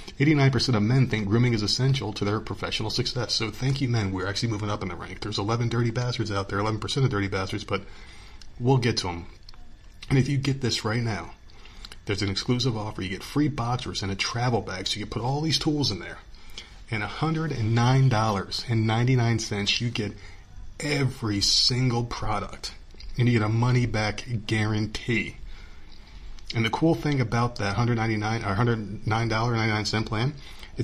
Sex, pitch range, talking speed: male, 100-125 Hz, 170 wpm